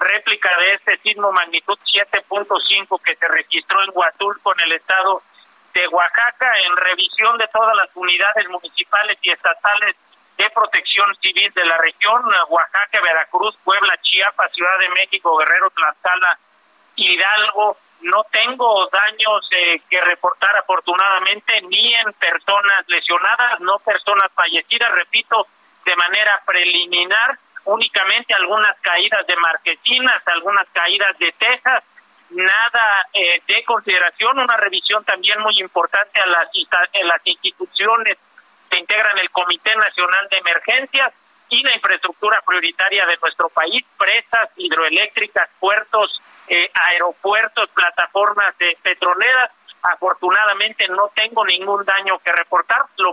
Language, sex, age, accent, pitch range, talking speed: Spanish, male, 40-59, Mexican, 180-215 Hz, 130 wpm